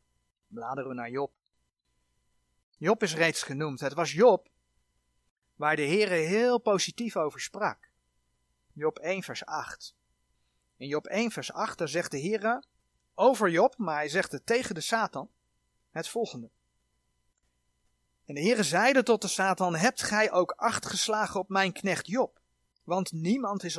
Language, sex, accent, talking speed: Dutch, male, Dutch, 155 wpm